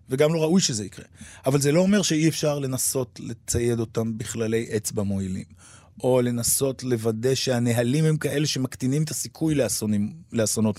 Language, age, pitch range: Hebrew, 30-49, 115-150 Hz